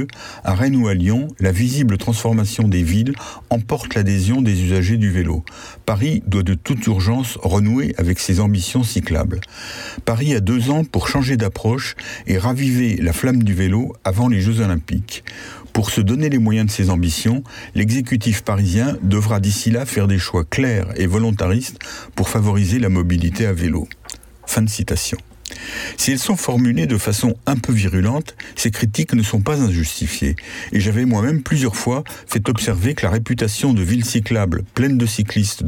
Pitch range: 95-120 Hz